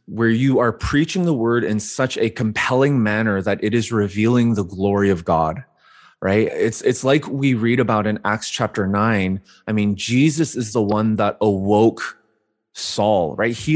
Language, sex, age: English, male, 20-39